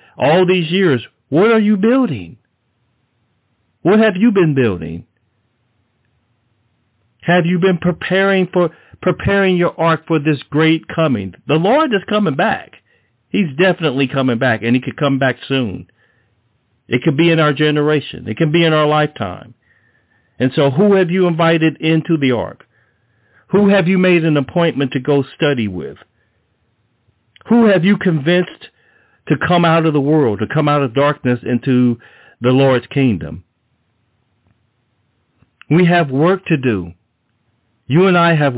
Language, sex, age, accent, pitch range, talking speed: English, male, 50-69, American, 120-165 Hz, 150 wpm